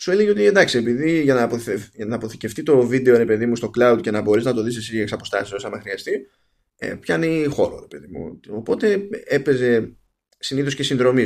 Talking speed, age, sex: 175 wpm, 20-39, male